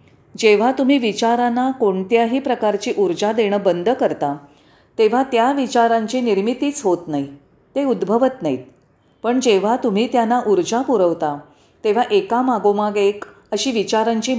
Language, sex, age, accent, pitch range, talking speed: Marathi, female, 40-59, native, 190-250 Hz, 120 wpm